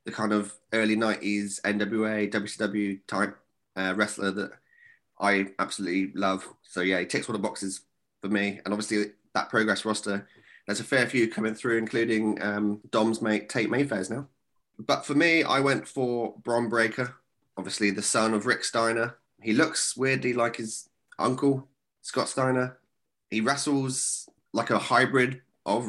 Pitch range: 105-120 Hz